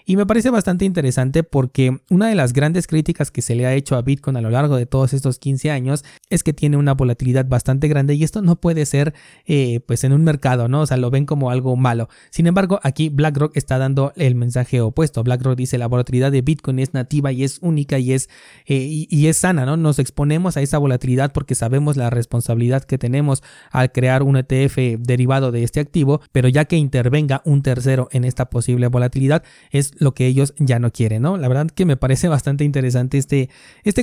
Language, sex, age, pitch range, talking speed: Spanish, male, 30-49, 125-150 Hz, 220 wpm